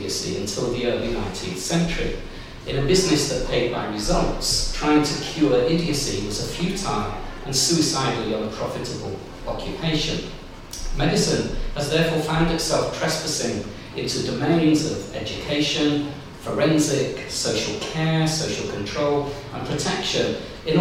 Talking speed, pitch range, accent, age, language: 120 wpm, 115-155 Hz, British, 50-69, English